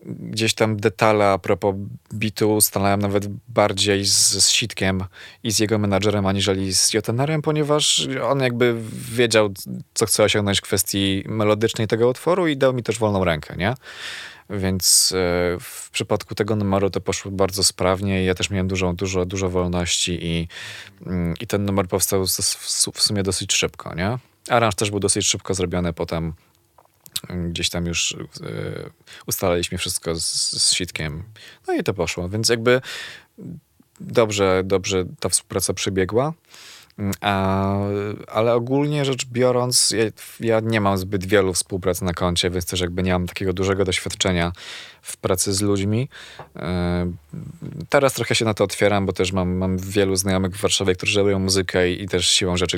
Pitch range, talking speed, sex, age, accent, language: 90-110 Hz, 160 wpm, male, 20-39, native, Polish